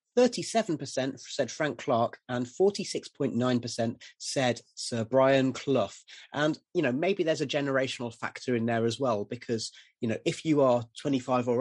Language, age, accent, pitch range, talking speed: English, 30-49, British, 120-145 Hz, 155 wpm